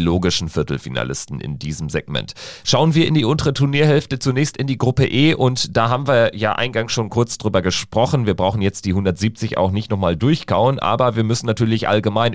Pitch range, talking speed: 90-125 Hz, 195 wpm